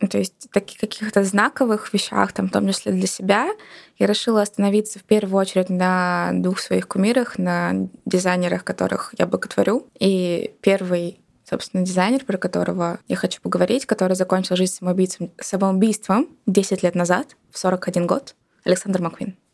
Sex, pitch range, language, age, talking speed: female, 185-215 Hz, Russian, 20-39, 145 wpm